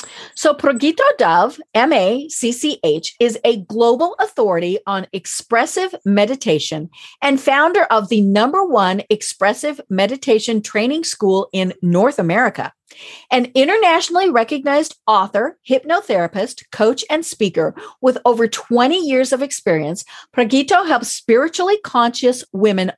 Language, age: English, 50-69